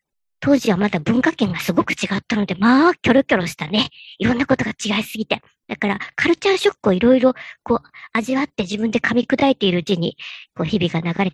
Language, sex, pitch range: Japanese, male, 195-275 Hz